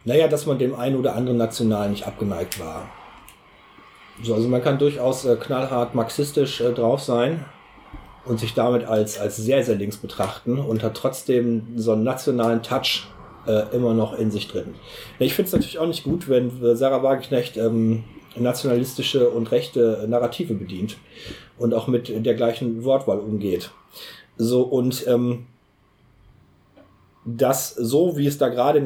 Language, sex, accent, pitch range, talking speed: German, male, German, 115-140 Hz, 160 wpm